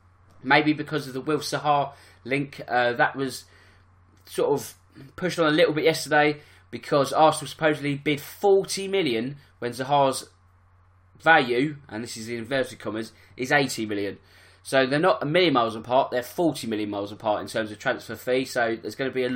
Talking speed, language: 180 wpm, English